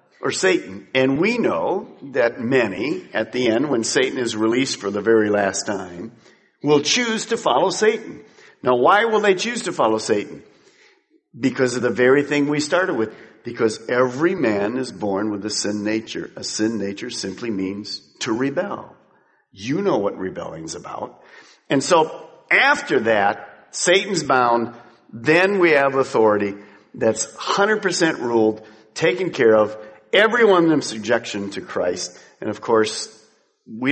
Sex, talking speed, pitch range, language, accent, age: male, 155 wpm, 110-165 Hz, English, American, 50-69